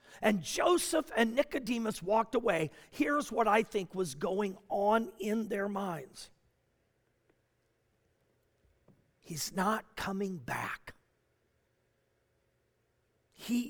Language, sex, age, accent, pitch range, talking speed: English, male, 50-69, American, 155-210 Hz, 90 wpm